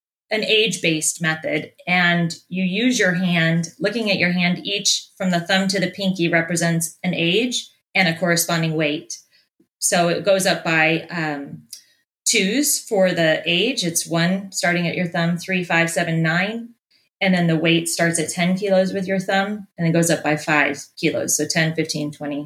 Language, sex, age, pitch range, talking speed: English, female, 30-49, 160-185 Hz, 180 wpm